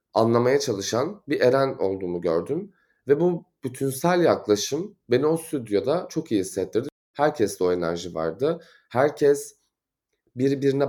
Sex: male